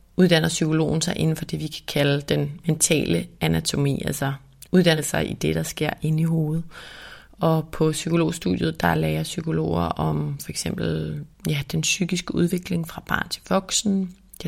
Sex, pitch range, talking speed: female, 105-175 Hz, 160 wpm